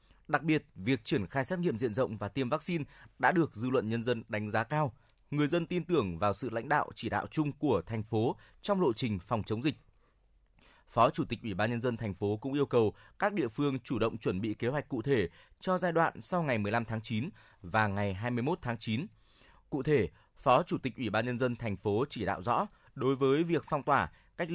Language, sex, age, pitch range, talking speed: Vietnamese, male, 20-39, 110-150 Hz, 235 wpm